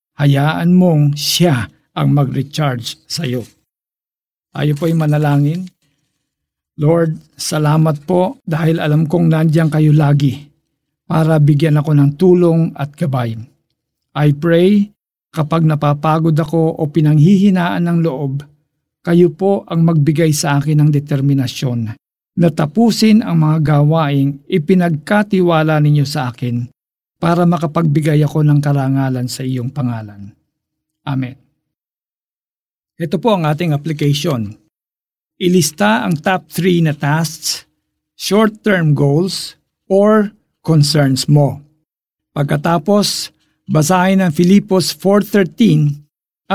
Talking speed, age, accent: 105 wpm, 50-69, native